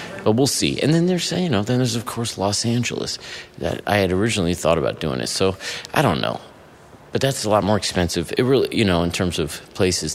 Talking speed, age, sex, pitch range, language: 235 wpm, 30-49, male, 85-110 Hz, English